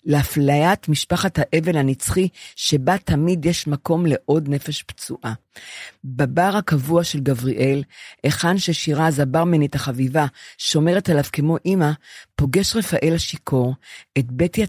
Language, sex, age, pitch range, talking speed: Hebrew, female, 50-69, 130-165 Hz, 115 wpm